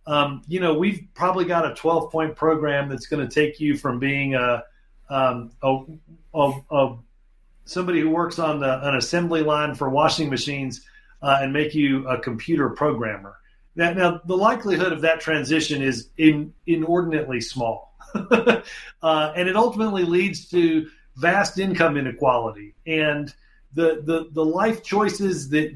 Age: 40-59